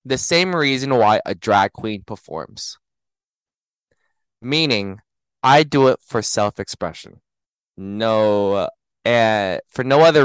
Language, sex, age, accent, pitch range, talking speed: English, male, 20-39, American, 105-150 Hz, 125 wpm